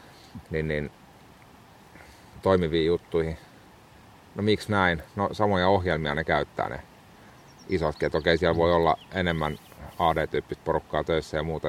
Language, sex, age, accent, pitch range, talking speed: Finnish, male, 30-49, native, 80-90 Hz, 125 wpm